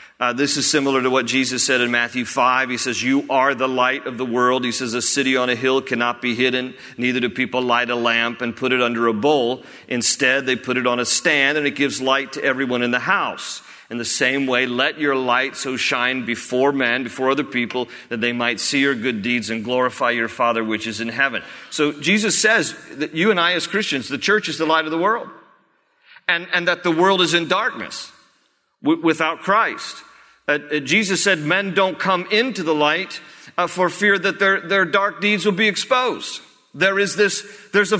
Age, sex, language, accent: 40-59, male, English, American